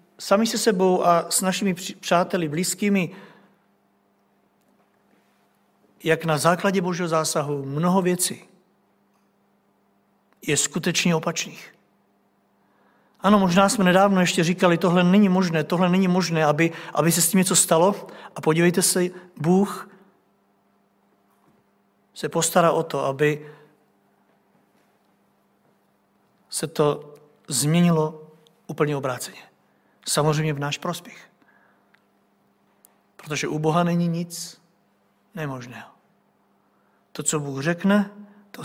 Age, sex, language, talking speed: 50-69, male, Czech, 100 wpm